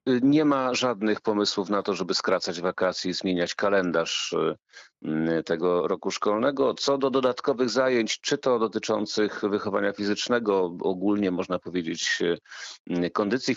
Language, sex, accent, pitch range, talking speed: Polish, male, native, 95-120 Hz, 125 wpm